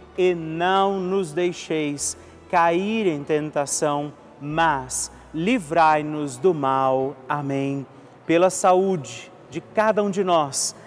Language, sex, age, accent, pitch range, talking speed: Portuguese, male, 40-59, Brazilian, 155-190 Hz, 105 wpm